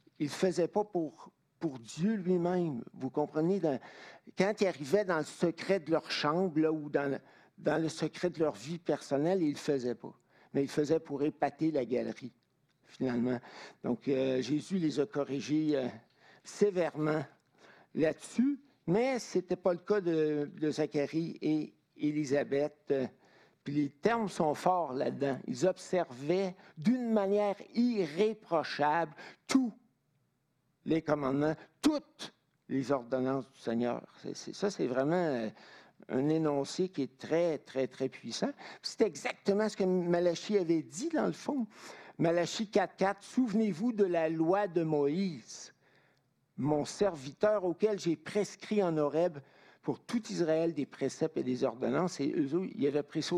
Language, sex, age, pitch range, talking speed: French, male, 60-79, 145-190 Hz, 155 wpm